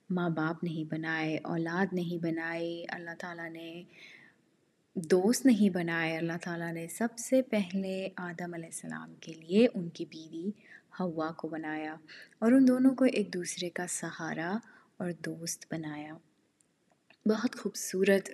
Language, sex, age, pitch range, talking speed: Urdu, female, 20-39, 165-205 Hz, 140 wpm